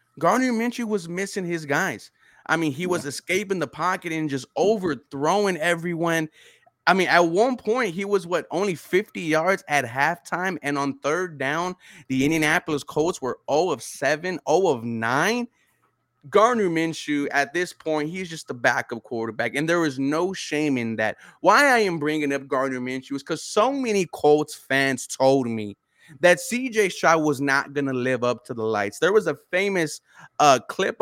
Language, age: English, 20-39